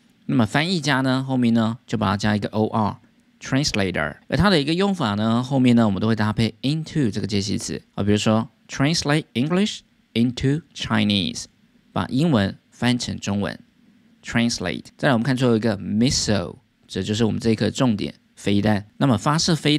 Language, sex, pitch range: Chinese, male, 105-135 Hz